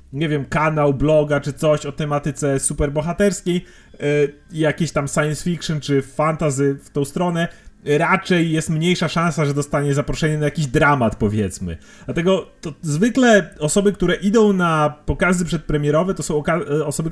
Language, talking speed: Polish, 150 wpm